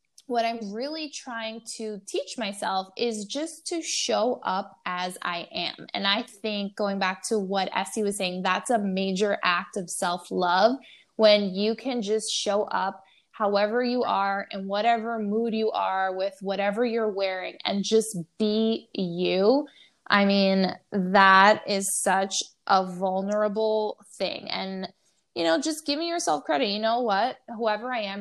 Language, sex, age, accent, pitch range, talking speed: English, female, 10-29, American, 195-230 Hz, 160 wpm